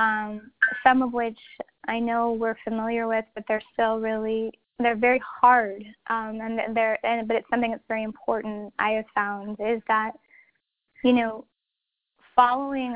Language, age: English, 10-29